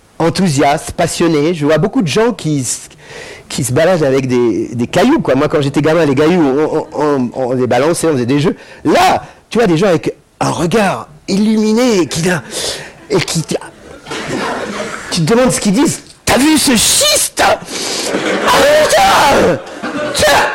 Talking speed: 170 wpm